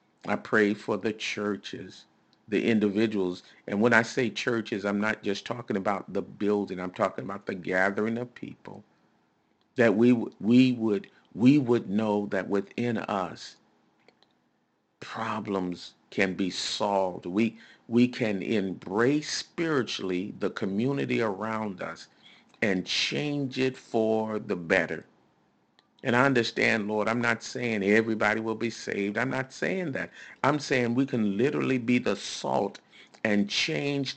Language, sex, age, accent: English, male, 50-69, American